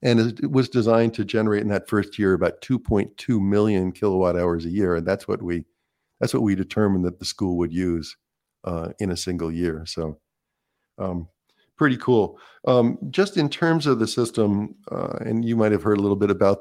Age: 50-69